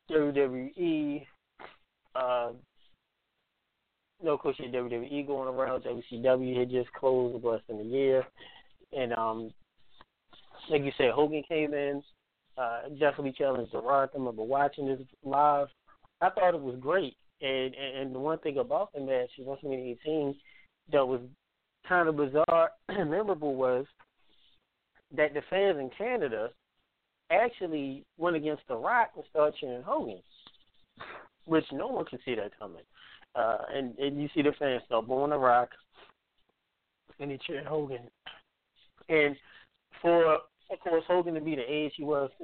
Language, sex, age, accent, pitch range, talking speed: English, male, 20-39, American, 130-155 Hz, 150 wpm